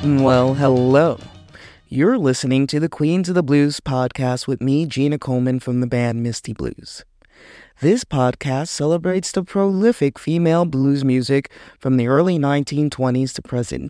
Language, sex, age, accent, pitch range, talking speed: English, male, 30-49, American, 130-175 Hz, 145 wpm